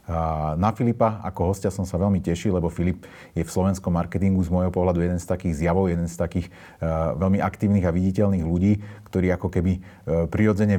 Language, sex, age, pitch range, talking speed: Slovak, male, 40-59, 85-100 Hz, 185 wpm